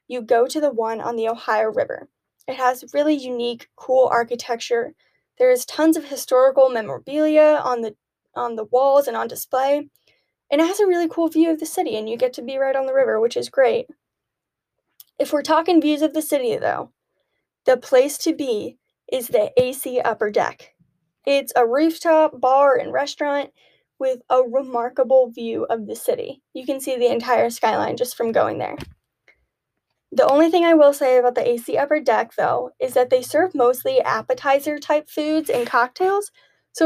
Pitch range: 245-310 Hz